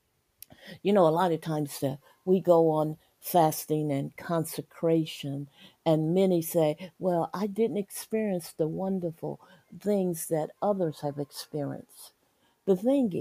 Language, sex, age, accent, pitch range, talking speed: English, female, 60-79, American, 170-225 Hz, 125 wpm